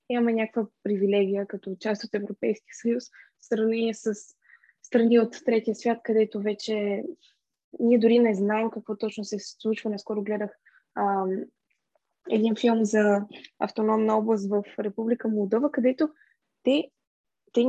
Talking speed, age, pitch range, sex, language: 130 wpm, 20-39, 215-255 Hz, female, Bulgarian